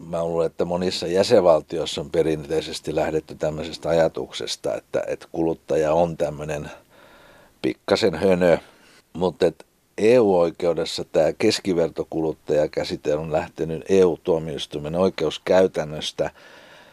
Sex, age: male, 60-79